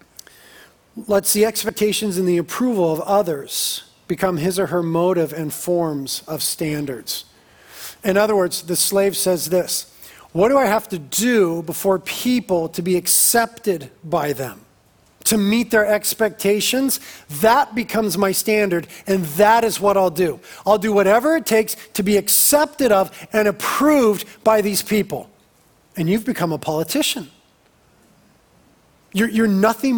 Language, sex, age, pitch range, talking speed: English, male, 40-59, 160-210 Hz, 145 wpm